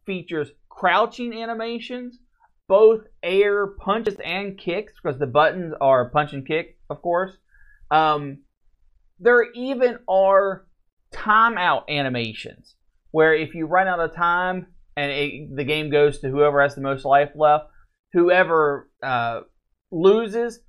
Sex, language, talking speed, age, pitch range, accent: male, English, 130 wpm, 30-49, 145-200 Hz, American